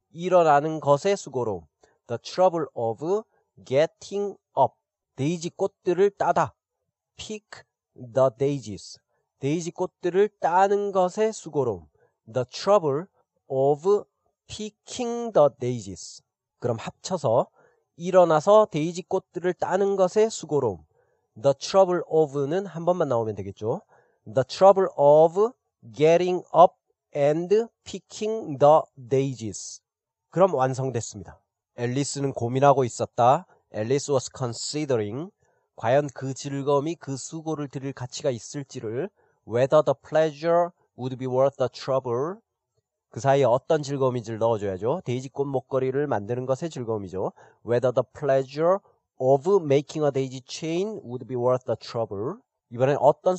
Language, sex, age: Korean, male, 40-59